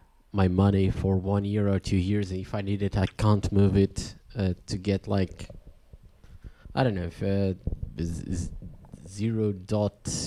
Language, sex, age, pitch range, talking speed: English, male, 20-39, 95-110 Hz, 175 wpm